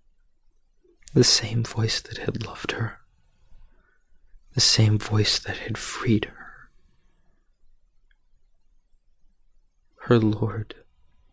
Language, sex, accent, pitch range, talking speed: English, male, American, 95-120 Hz, 85 wpm